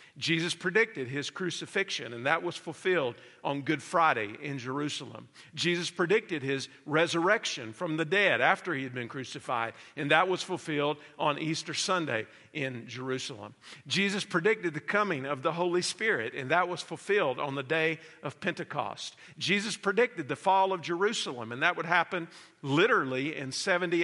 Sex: male